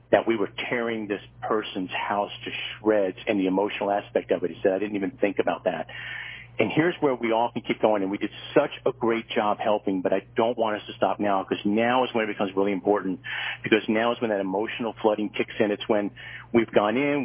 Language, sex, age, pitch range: English, male, 50-69, 100-120 Hz